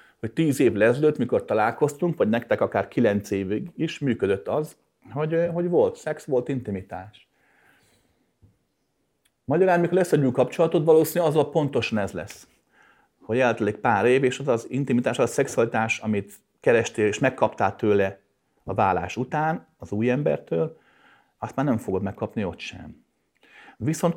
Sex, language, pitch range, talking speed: male, Hungarian, 105-150 Hz, 150 wpm